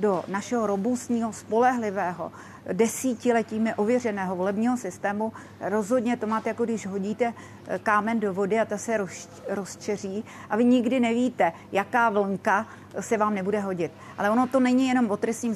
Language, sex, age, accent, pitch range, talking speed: Czech, female, 40-59, native, 200-225 Hz, 145 wpm